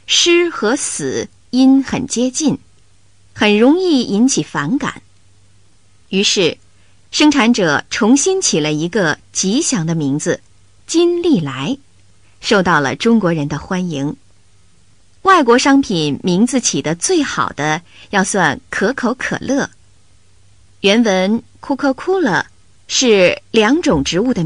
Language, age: Chinese, 20-39